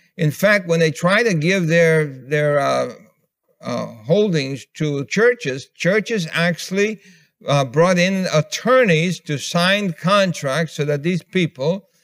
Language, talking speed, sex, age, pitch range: English, 135 wpm, male, 60-79, 155-185 Hz